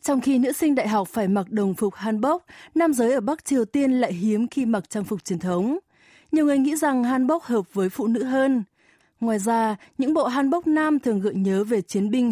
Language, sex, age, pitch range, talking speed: Vietnamese, female, 20-39, 205-265 Hz, 230 wpm